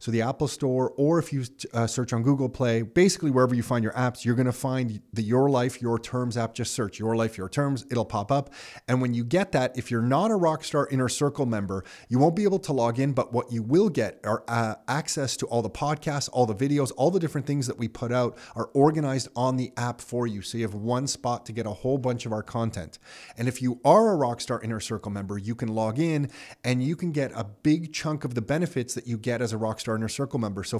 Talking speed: 255 wpm